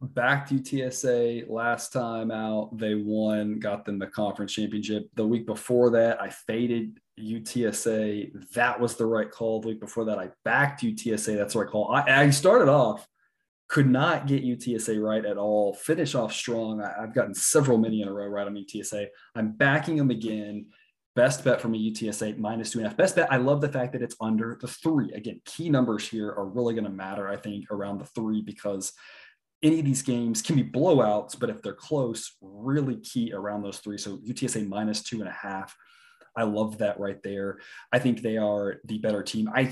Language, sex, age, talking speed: English, male, 20-39, 205 wpm